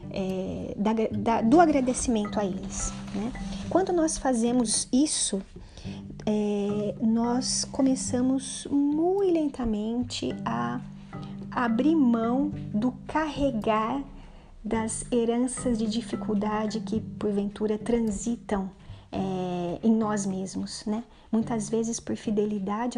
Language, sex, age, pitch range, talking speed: Portuguese, female, 40-59, 195-260 Hz, 85 wpm